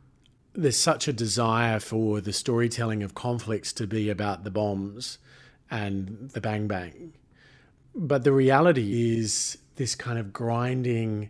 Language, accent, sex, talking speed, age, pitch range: English, Australian, male, 135 wpm, 40-59, 110-135 Hz